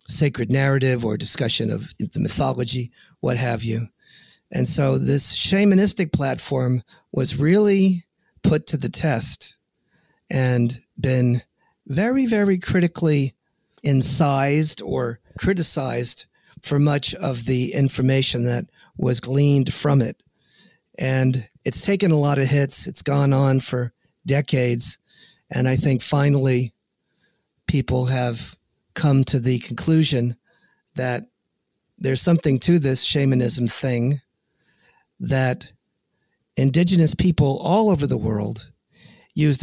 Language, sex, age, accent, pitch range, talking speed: English, male, 40-59, American, 125-150 Hz, 115 wpm